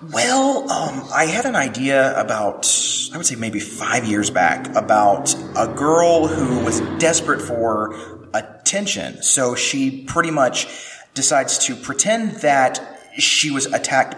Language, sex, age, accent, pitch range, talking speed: English, male, 30-49, American, 120-175 Hz, 140 wpm